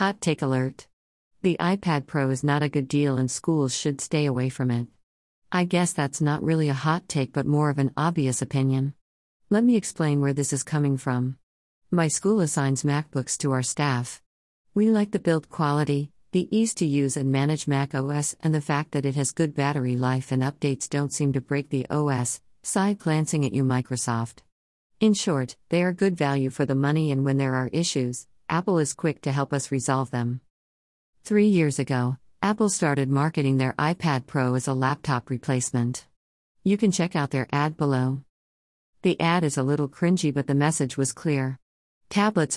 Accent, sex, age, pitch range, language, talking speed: American, female, 50-69, 130-160 Hz, English, 190 wpm